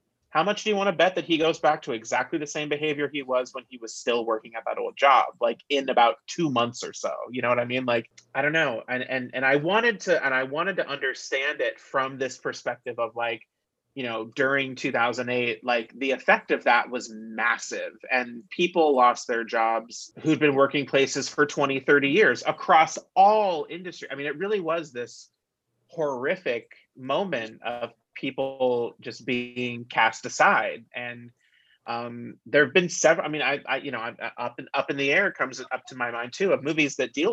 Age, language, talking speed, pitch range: 30-49, English, 205 wpm, 120-155 Hz